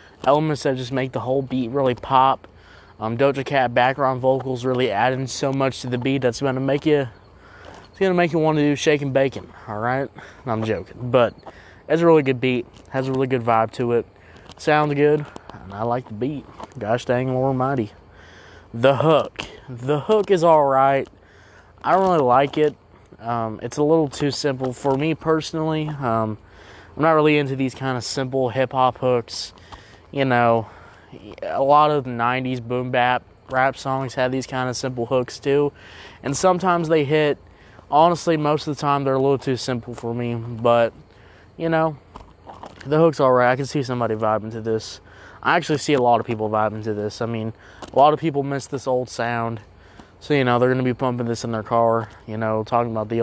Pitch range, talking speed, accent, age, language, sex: 110-140 Hz, 195 wpm, American, 20-39, English, male